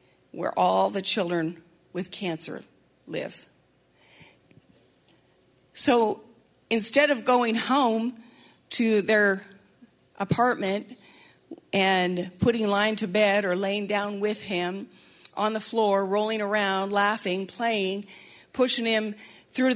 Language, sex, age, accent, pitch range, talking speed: English, female, 40-59, American, 190-235 Hz, 105 wpm